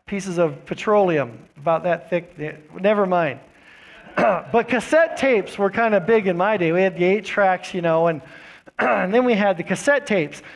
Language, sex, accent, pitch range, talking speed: English, male, American, 195-270 Hz, 190 wpm